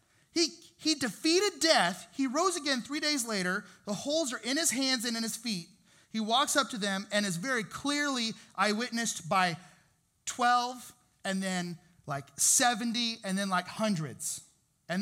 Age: 30-49